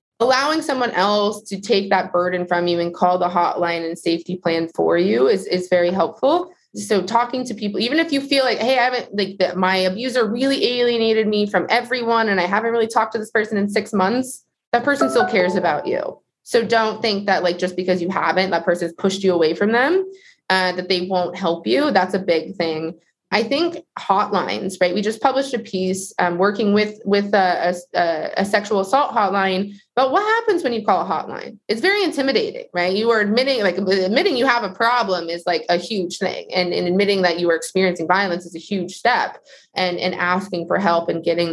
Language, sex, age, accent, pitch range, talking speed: English, female, 20-39, American, 180-230 Hz, 215 wpm